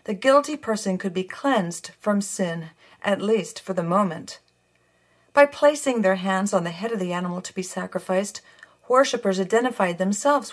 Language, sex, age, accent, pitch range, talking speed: English, female, 50-69, American, 180-230 Hz, 165 wpm